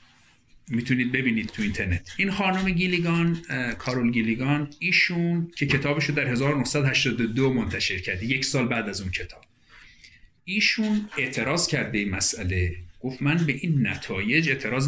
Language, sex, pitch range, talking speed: Persian, male, 115-155 Hz, 135 wpm